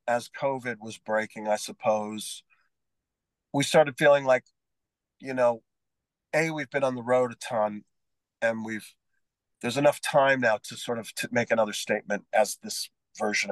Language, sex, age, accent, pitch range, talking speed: English, male, 40-59, American, 120-150 Hz, 160 wpm